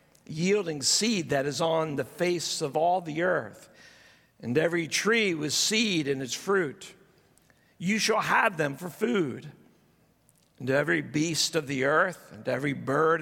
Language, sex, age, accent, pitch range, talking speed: English, male, 50-69, American, 150-190 Hz, 155 wpm